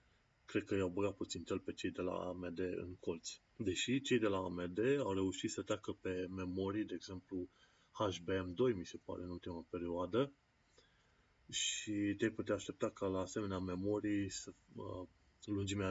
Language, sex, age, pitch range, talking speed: Romanian, male, 30-49, 90-100 Hz, 165 wpm